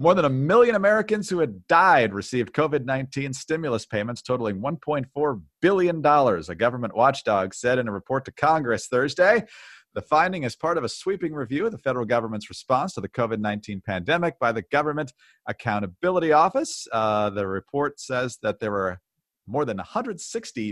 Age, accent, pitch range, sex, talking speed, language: 40-59, American, 115-165 Hz, male, 165 wpm, English